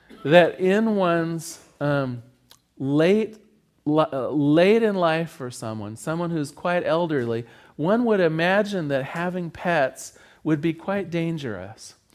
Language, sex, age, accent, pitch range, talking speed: English, male, 40-59, American, 150-200 Hz, 125 wpm